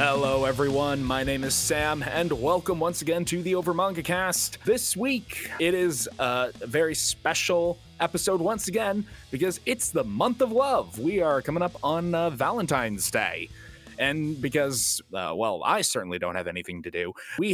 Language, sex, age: English, male, 20-39